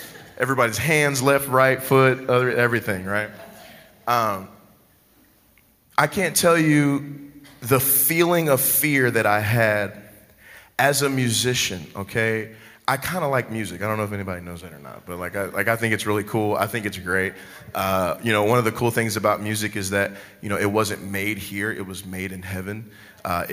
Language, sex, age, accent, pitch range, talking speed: English, male, 30-49, American, 100-115 Hz, 190 wpm